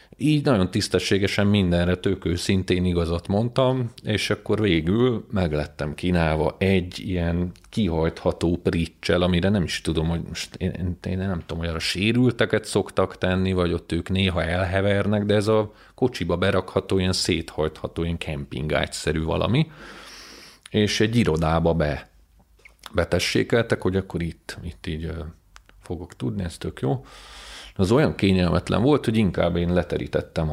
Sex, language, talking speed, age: male, Hungarian, 140 wpm, 40-59